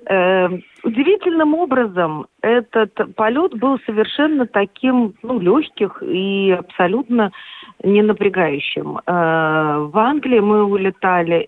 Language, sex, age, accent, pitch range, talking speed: Russian, female, 40-59, native, 185-245 Hz, 90 wpm